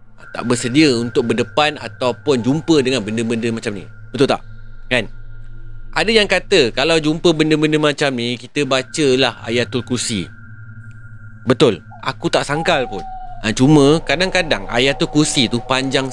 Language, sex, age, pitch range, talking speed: Malay, male, 30-49, 110-155 Hz, 140 wpm